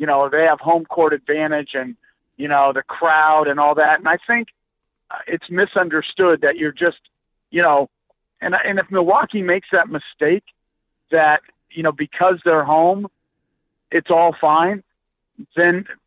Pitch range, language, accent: 155-175 Hz, English, American